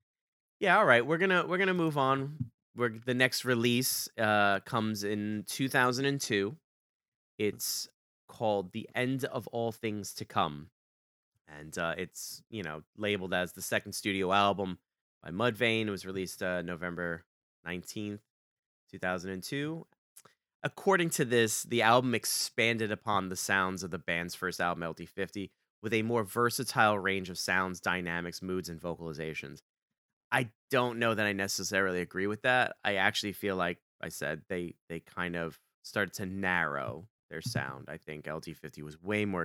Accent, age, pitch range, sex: American, 30-49, 90-120 Hz, male